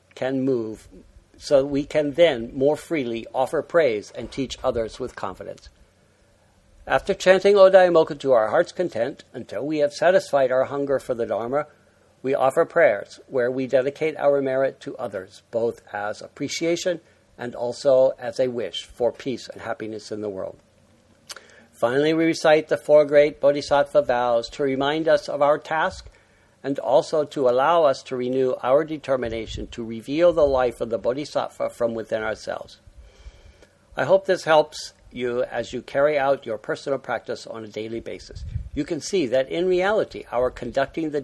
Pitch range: 115-155 Hz